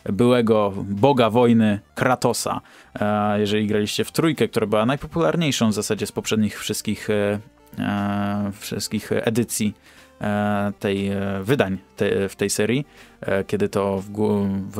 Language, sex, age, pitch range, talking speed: Polish, male, 20-39, 100-125 Hz, 130 wpm